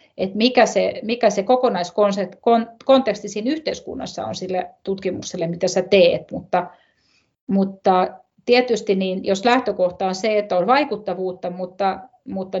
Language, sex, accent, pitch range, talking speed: Finnish, female, native, 185-210 Hz, 130 wpm